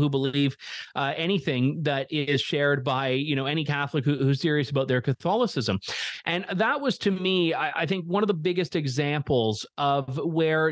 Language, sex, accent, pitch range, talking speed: English, male, American, 135-180 Hz, 185 wpm